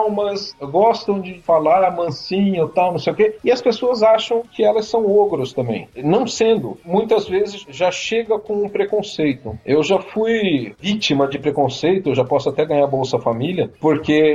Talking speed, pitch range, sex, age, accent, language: 180 wpm, 155-215 Hz, male, 40-59, Brazilian, English